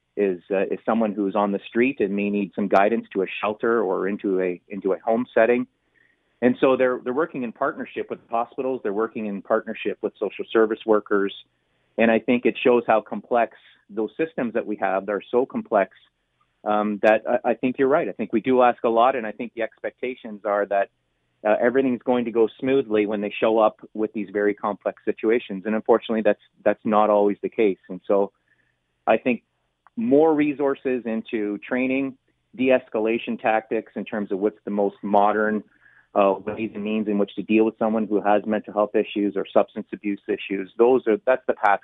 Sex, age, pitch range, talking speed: male, 30-49, 100-125 Hz, 200 wpm